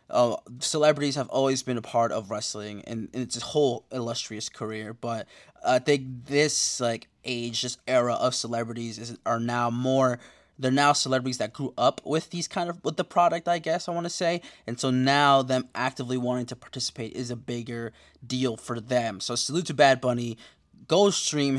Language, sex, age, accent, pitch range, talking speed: English, male, 20-39, American, 120-165 Hz, 195 wpm